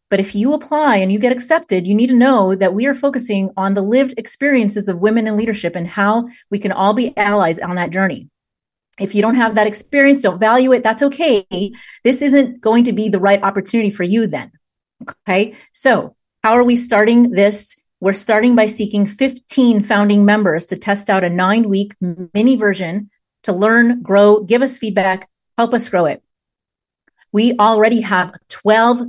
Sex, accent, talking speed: female, American, 190 wpm